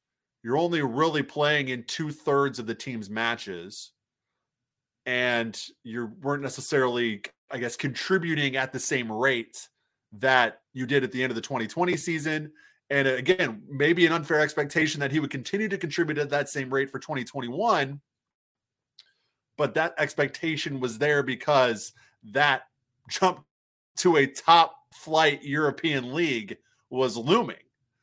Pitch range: 120-150 Hz